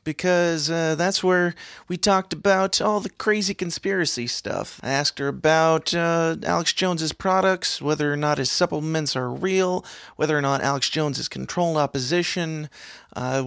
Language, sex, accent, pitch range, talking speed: English, male, American, 140-175 Hz, 160 wpm